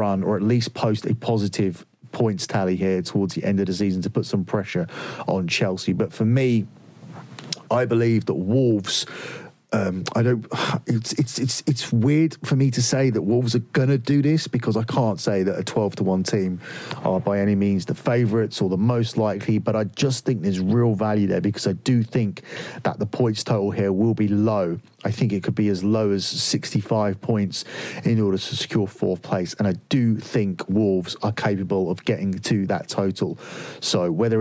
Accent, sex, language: British, male, English